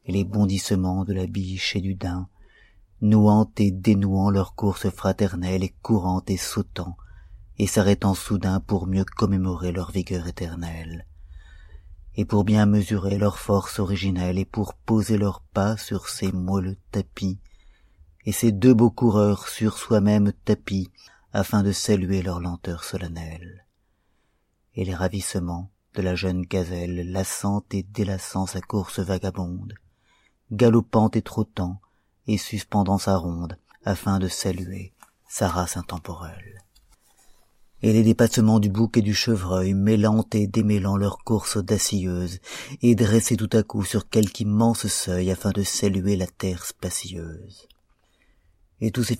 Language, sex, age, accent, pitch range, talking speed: French, male, 30-49, French, 90-105 Hz, 140 wpm